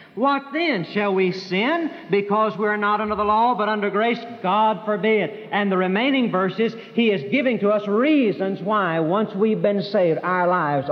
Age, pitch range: 60-79, 185-240 Hz